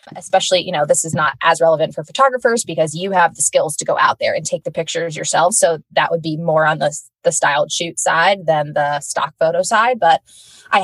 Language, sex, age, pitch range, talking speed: English, female, 20-39, 160-195 Hz, 235 wpm